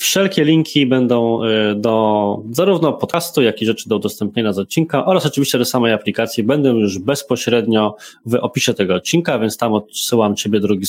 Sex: male